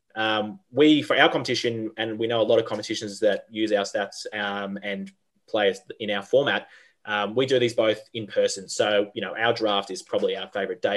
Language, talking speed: English, 215 wpm